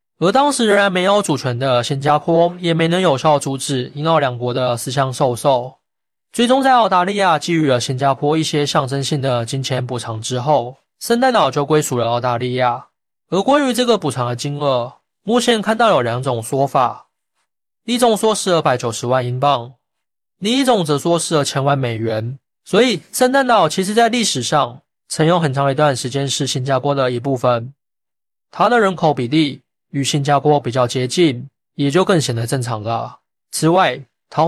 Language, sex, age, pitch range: Chinese, male, 20-39, 130-175 Hz